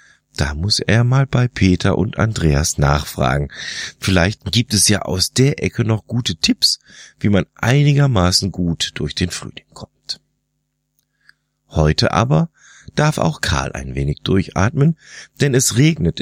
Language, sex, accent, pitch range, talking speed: German, male, German, 85-115 Hz, 140 wpm